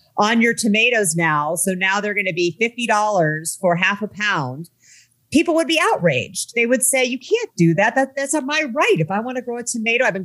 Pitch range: 160-210 Hz